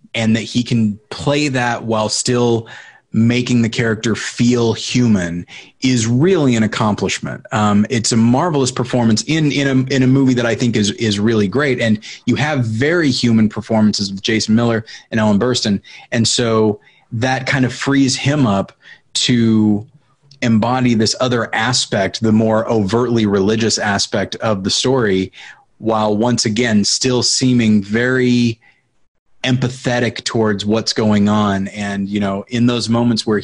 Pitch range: 105-125 Hz